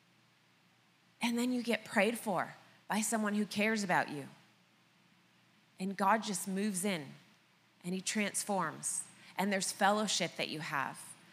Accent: American